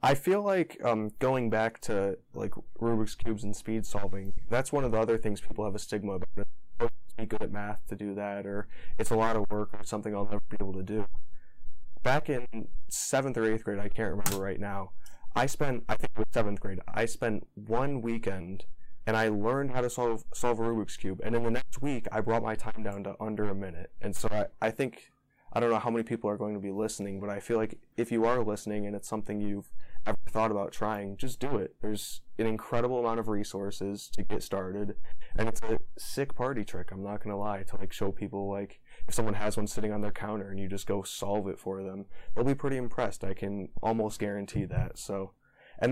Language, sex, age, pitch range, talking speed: English, male, 20-39, 100-115 Hz, 235 wpm